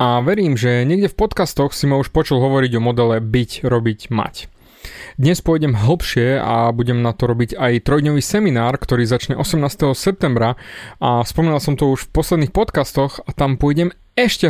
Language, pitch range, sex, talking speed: Slovak, 120-160 Hz, male, 180 wpm